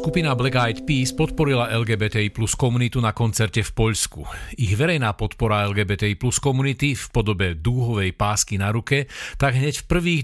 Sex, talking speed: male, 165 wpm